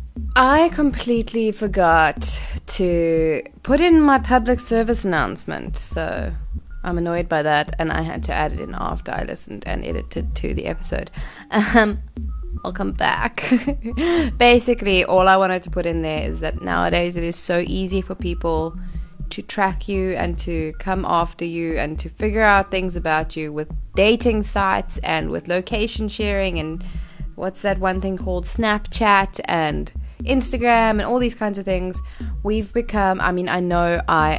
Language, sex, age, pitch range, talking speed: English, female, 20-39, 155-200 Hz, 165 wpm